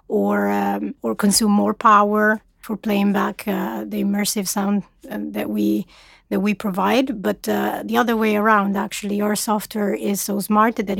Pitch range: 200-230 Hz